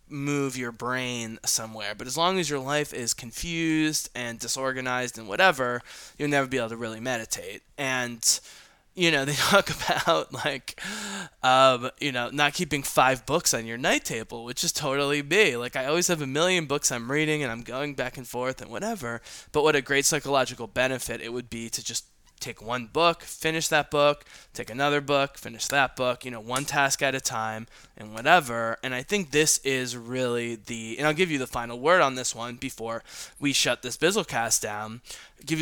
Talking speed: 200 wpm